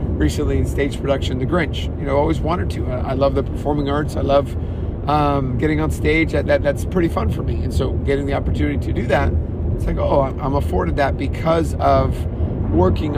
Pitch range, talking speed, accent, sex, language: 80-95 Hz, 210 wpm, American, male, English